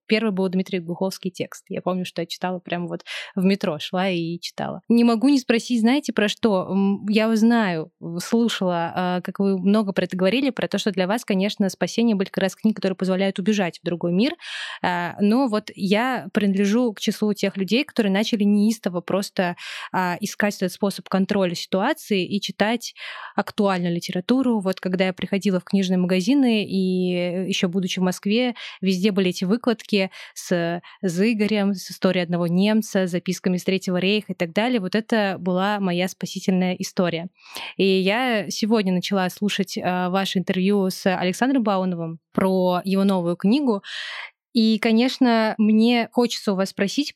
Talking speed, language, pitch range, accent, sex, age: 165 wpm, Russian, 185-220 Hz, native, female, 20-39